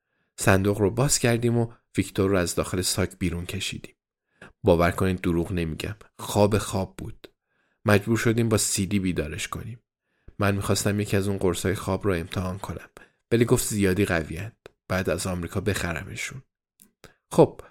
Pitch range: 95-120 Hz